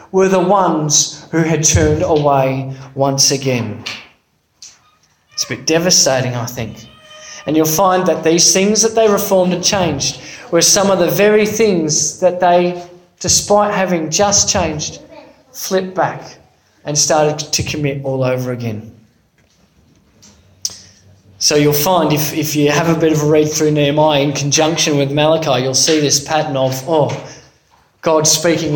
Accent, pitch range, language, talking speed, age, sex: Australian, 135-175 Hz, English, 150 wpm, 20-39, male